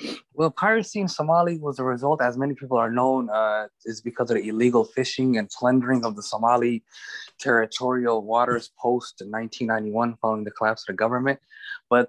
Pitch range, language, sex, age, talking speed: 115-135 Hz, English, male, 20-39, 175 wpm